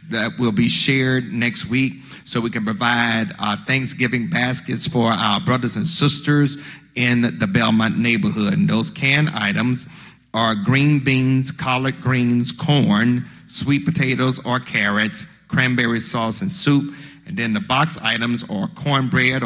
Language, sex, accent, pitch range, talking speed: English, male, American, 115-145 Hz, 145 wpm